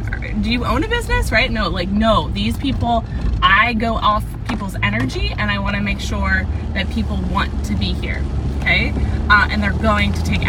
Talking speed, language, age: 200 wpm, English, 20-39